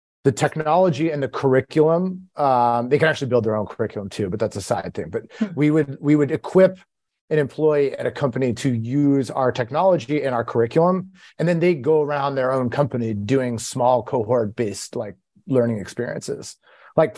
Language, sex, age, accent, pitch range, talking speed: English, male, 30-49, American, 130-155 Hz, 180 wpm